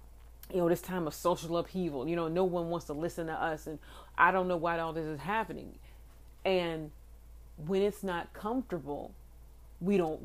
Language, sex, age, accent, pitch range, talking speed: English, female, 30-49, American, 155-200 Hz, 185 wpm